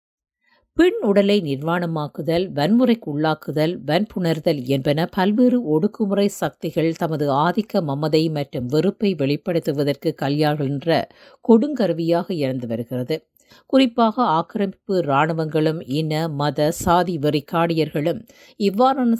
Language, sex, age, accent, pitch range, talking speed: Tamil, female, 50-69, native, 145-195 Hz, 90 wpm